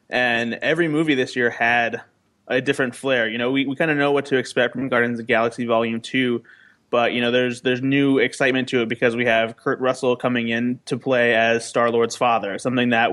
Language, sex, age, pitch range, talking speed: English, male, 20-39, 120-140 Hz, 225 wpm